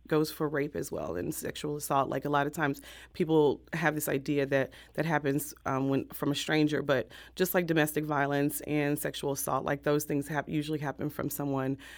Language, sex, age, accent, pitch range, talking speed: English, female, 30-49, American, 145-170 Hz, 205 wpm